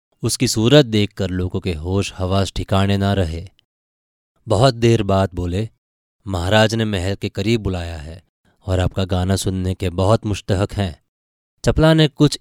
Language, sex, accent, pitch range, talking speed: Hindi, male, native, 95-110 Hz, 155 wpm